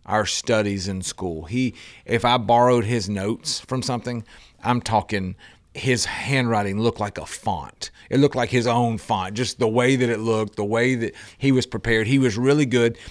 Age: 40-59